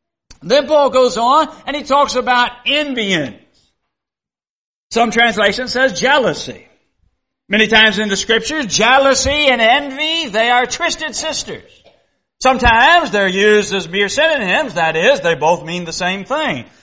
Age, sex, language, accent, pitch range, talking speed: 60-79, male, English, American, 185-285 Hz, 140 wpm